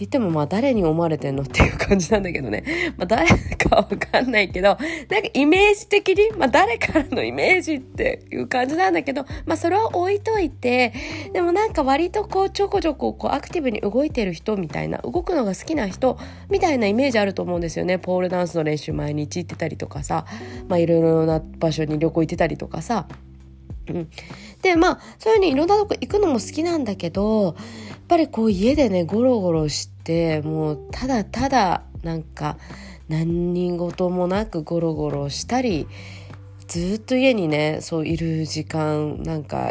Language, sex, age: Japanese, female, 20-39